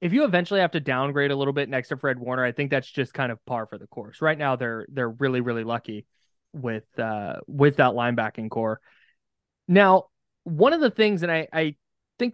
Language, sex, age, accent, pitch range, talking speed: English, male, 20-39, American, 130-175 Hz, 220 wpm